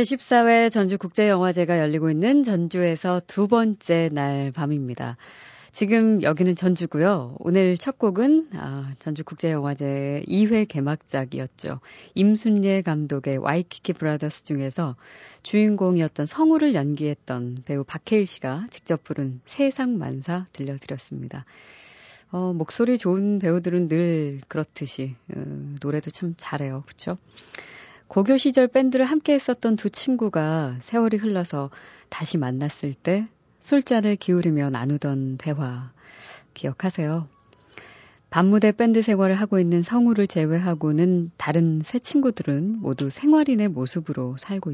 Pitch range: 145-215 Hz